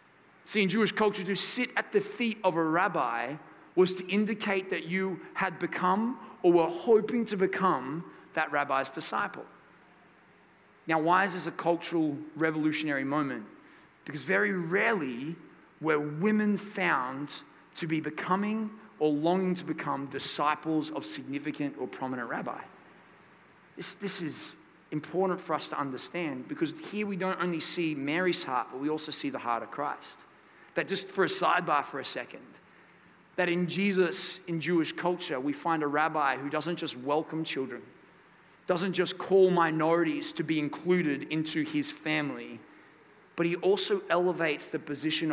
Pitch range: 150-190 Hz